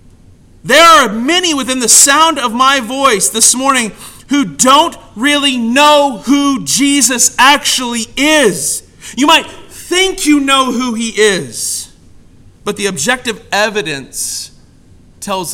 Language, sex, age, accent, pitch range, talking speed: English, male, 40-59, American, 170-280 Hz, 125 wpm